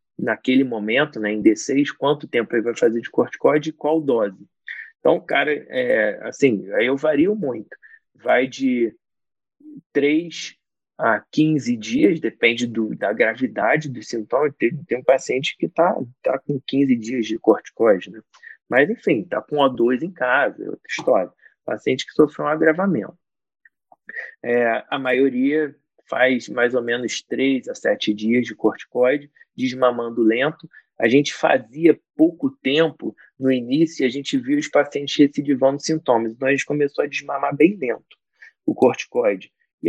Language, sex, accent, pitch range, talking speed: Portuguese, male, Brazilian, 120-165 Hz, 155 wpm